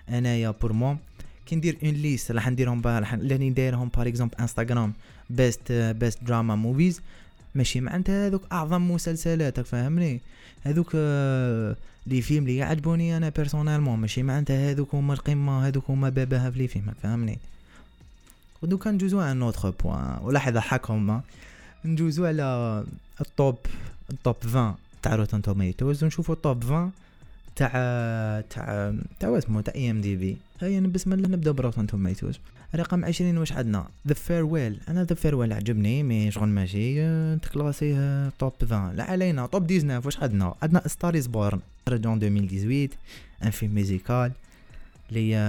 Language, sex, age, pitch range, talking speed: Arabic, male, 20-39, 110-150 Hz, 140 wpm